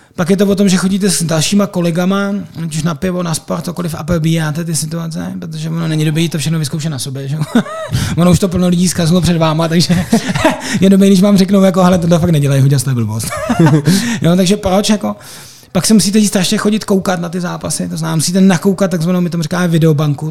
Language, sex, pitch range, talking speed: Czech, male, 150-190 Hz, 215 wpm